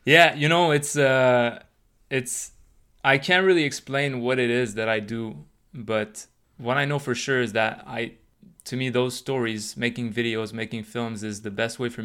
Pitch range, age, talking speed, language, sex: 115-130 Hz, 20-39, 190 wpm, English, male